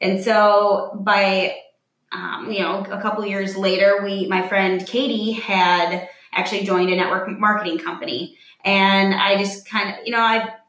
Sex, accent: female, American